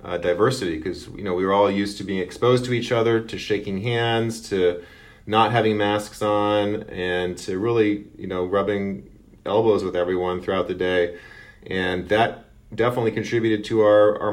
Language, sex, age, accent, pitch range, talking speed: English, male, 40-59, American, 90-105 Hz, 175 wpm